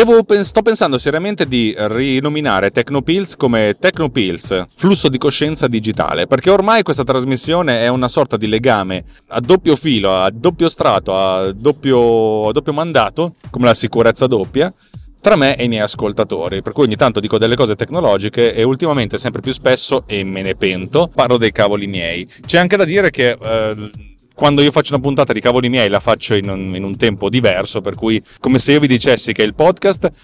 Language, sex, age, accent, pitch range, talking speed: Italian, male, 30-49, native, 105-145 Hz, 185 wpm